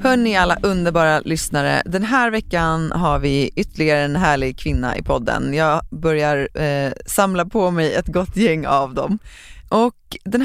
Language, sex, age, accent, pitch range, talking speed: Swedish, female, 30-49, native, 135-175 Hz, 165 wpm